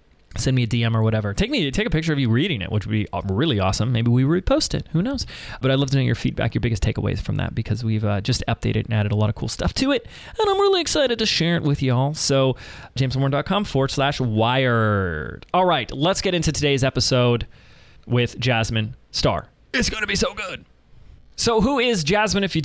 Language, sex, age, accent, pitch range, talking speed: English, male, 20-39, American, 115-145 Hz, 235 wpm